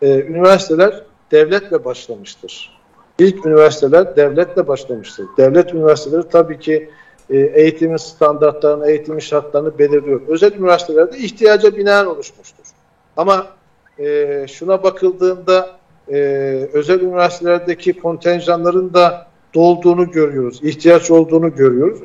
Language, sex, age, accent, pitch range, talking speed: Turkish, male, 50-69, native, 160-190 Hz, 100 wpm